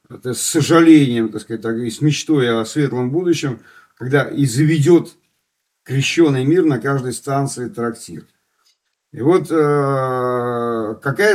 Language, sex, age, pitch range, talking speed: Russian, male, 50-69, 115-150 Hz, 115 wpm